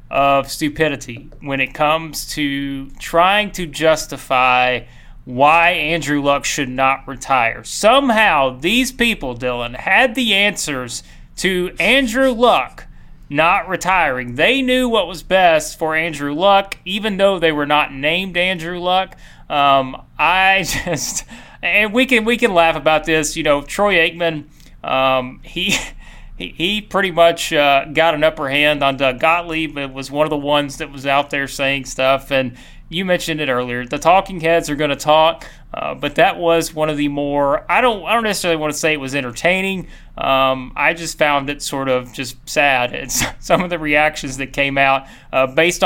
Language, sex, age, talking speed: English, male, 30-49, 175 wpm